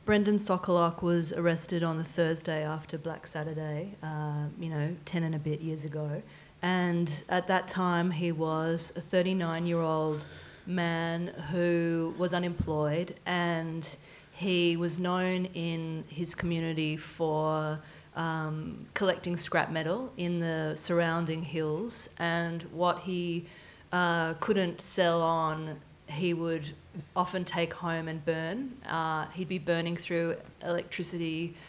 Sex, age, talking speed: female, 30-49, 125 wpm